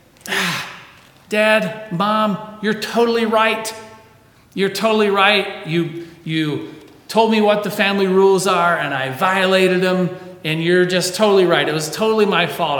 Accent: American